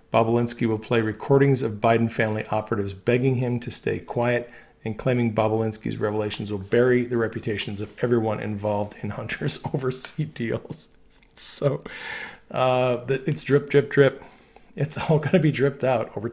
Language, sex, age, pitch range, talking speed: English, male, 40-59, 110-135 Hz, 150 wpm